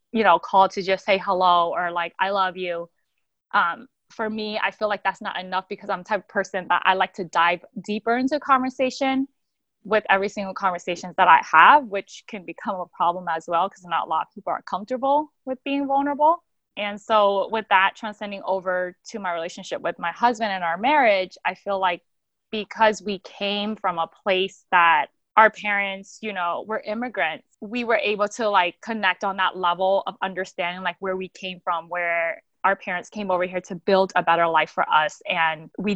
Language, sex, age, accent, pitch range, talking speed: English, female, 20-39, American, 180-215 Hz, 205 wpm